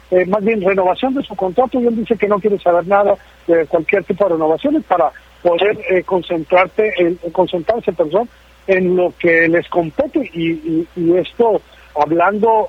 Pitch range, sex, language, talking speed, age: 170-210 Hz, male, Spanish, 185 wpm, 50-69